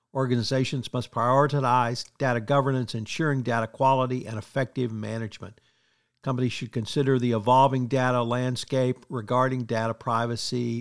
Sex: male